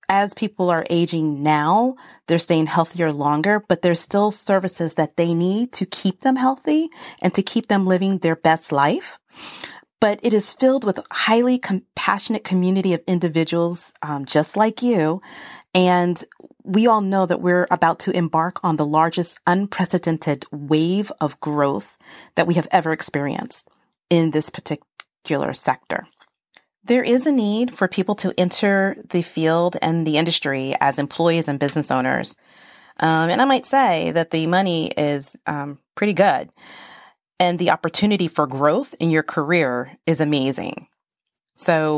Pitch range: 155-195 Hz